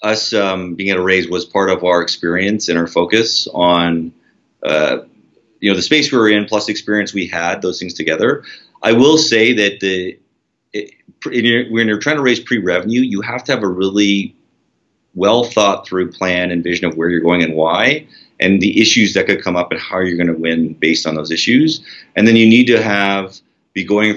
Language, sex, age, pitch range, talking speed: English, male, 30-49, 85-105 Hz, 220 wpm